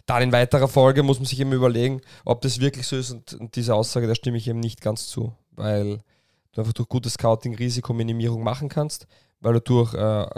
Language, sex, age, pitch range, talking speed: German, male, 20-39, 110-130 Hz, 215 wpm